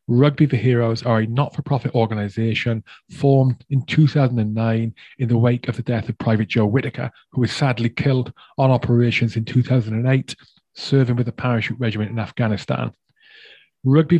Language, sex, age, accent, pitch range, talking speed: English, male, 30-49, British, 115-135 Hz, 160 wpm